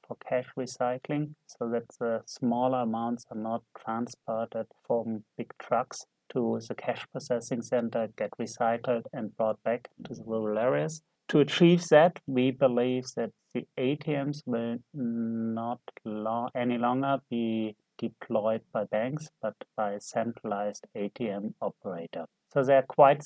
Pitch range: 115-135 Hz